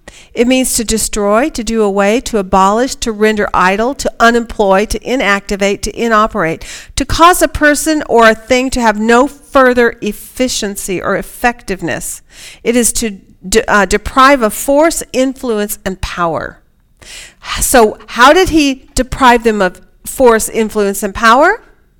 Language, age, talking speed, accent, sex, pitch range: English, 50-69, 145 wpm, American, female, 210-270 Hz